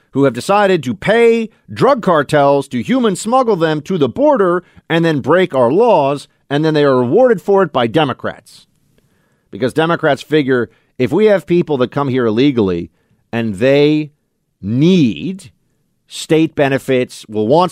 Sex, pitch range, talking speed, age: male, 110-160 Hz, 155 wpm, 40-59